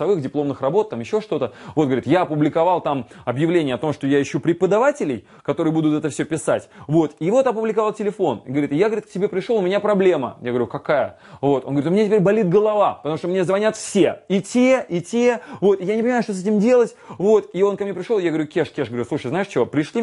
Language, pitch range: Russian, 140-195 Hz